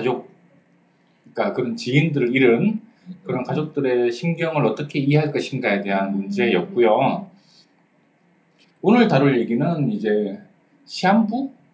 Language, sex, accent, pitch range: Korean, male, native, 135-205 Hz